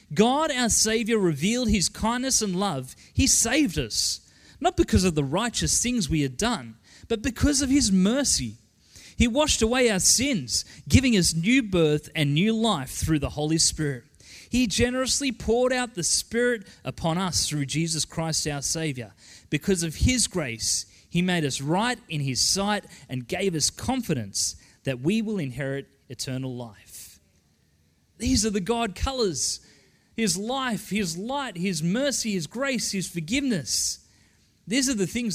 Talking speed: 160 wpm